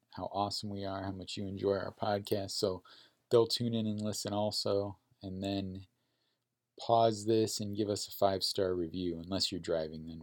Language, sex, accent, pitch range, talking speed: English, male, American, 95-115 Hz, 180 wpm